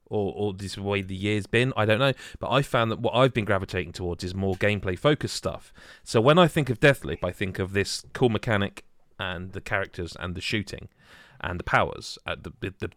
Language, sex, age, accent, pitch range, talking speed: English, male, 30-49, British, 100-140 Hz, 220 wpm